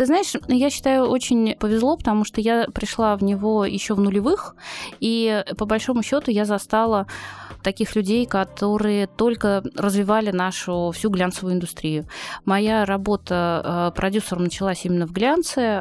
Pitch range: 180-210 Hz